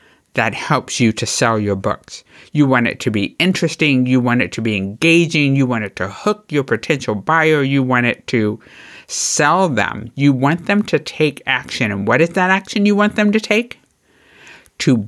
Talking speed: 200 wpm